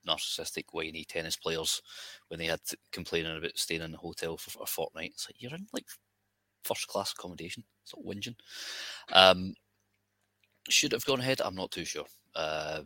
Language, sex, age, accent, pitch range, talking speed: English, male, 20-39, British, 85-105 Hz, 175 wpm